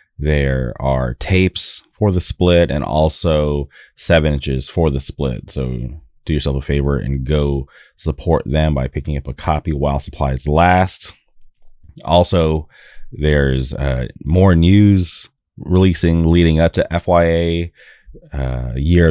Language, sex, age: English, male, 30-49